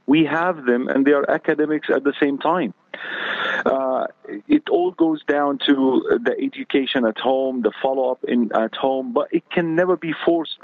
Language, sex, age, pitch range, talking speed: English, male, 40-59, 130-170 Hz, 180 wpm